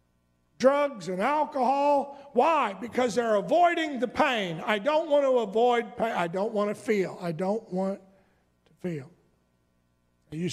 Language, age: English, 60-79